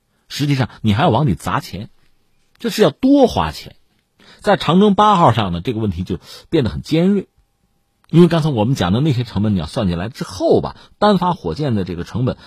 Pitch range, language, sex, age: 100-170 Hz, Chinese, male, 50-69